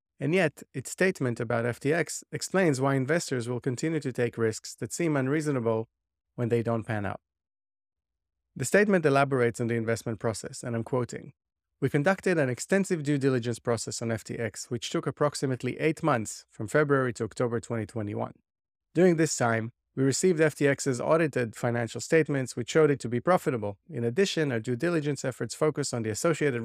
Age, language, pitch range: 30-49, English, 120-150 Hz